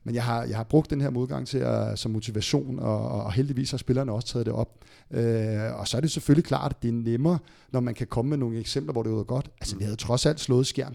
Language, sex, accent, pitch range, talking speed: Danish, male, native, 115-135 Hz, 285 wpm